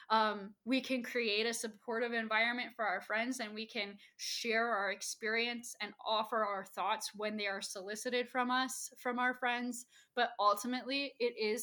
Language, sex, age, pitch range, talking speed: English, female, 10-29, 215-245 Hz, 170 wpm